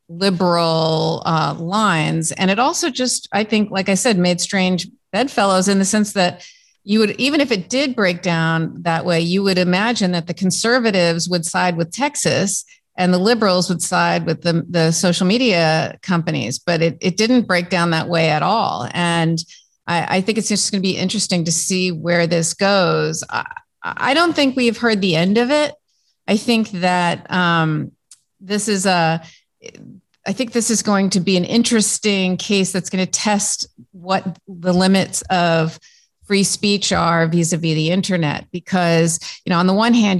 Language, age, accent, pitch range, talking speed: English, 40-59, American, 170-205 Hz, 185 wpm